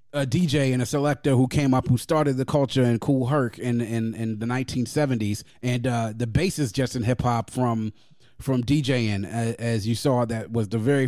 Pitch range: 115-135 Hz